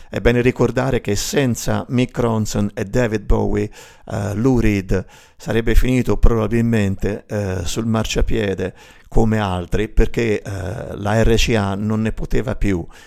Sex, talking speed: male, 135 wpm